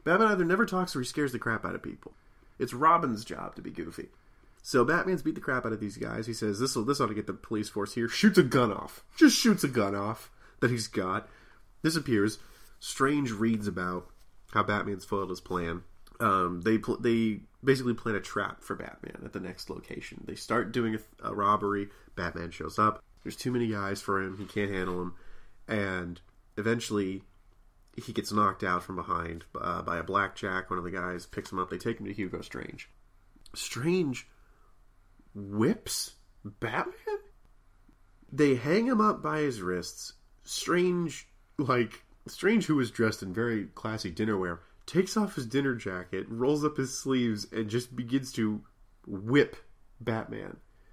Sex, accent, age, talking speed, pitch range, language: male, American, 30-49, 185 wpm, 95-140 Hz, English